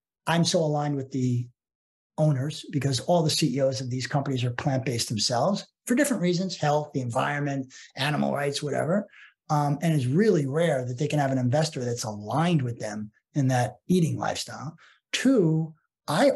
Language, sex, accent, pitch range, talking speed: English, male, American, 135-175 Hz, 170 wpm